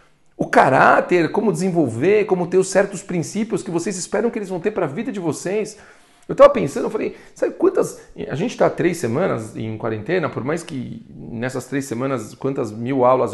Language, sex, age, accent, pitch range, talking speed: Portuguese, male, 40-59, Brazilian, 125-175 Hz, 200 wpm